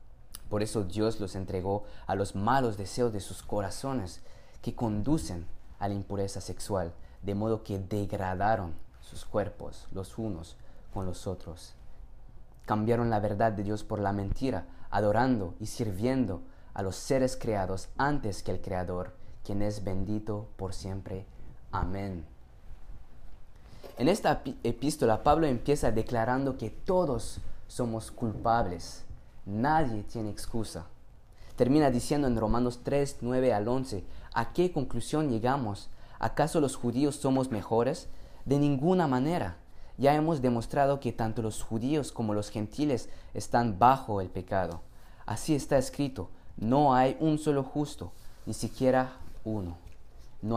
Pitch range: 95-125 Hz